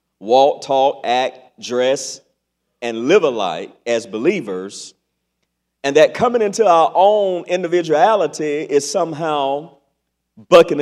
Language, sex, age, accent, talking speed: English, male, 50-69, American, 105 wpm